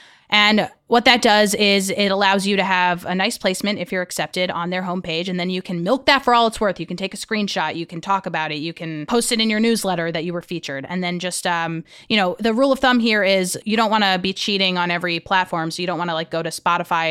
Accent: American